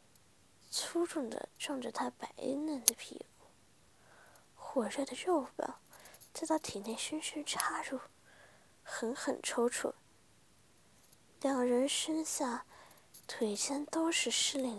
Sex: female